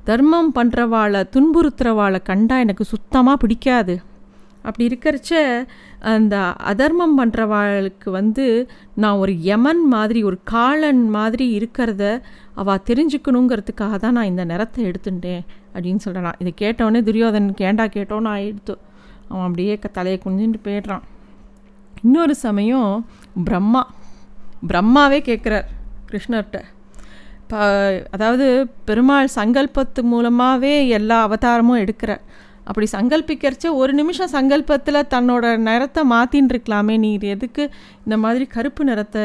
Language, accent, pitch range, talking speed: Tamil, native, 205-260 Hz, 105 wpm